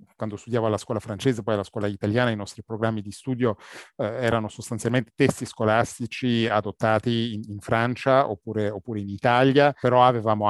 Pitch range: 105-125 Hz